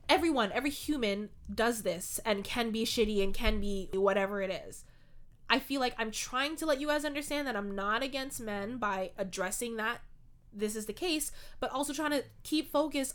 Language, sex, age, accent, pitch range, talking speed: English, female, 20-39, American, 215-275 Hz, 195 wpm